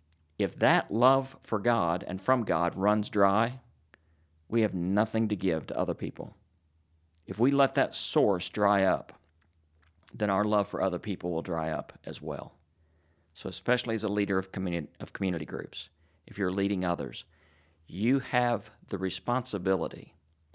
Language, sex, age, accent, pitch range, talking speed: English, male, 40-59, American, 80-110 Hz, 160 wpm